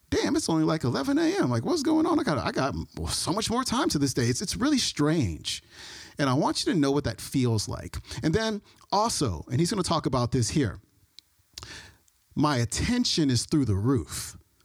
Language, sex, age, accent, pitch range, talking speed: English, male, 40-59, American, 125-155 Hz, 210 wpm